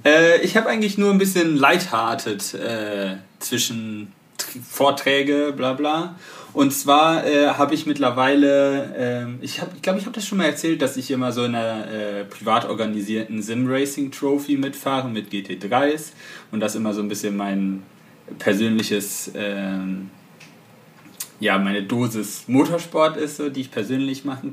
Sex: male